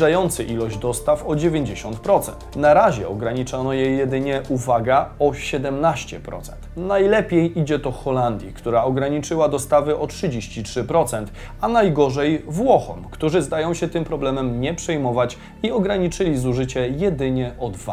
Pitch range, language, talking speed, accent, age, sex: 125-180 Hz, Polish, 120 wpm, native, 30-49, male